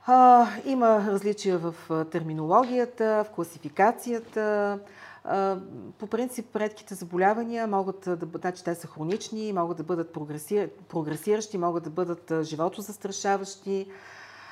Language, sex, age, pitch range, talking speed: Bulgarian, female, 40-59, 165-210 Hz, 105 wpm